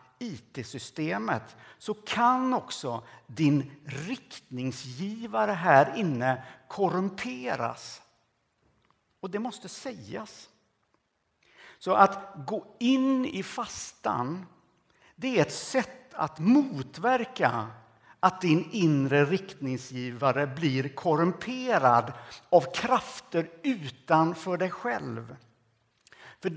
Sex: male